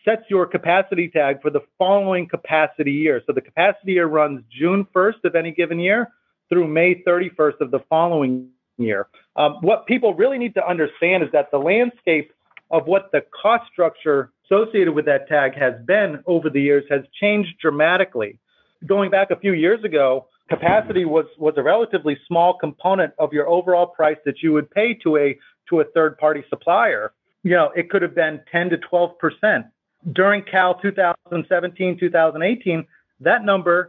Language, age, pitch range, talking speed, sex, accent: English, 40-59, 150-185 Hz, 170 wpm, male, American